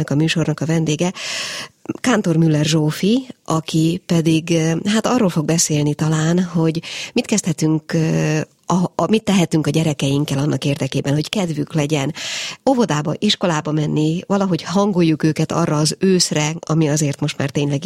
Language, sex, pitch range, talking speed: Hungarian, female, 155-180 Hz, 140 wpm